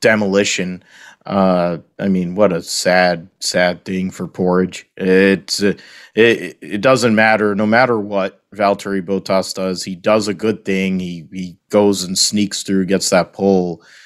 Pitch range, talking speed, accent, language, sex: 90-100 Hz, 160 wpm, American, English, male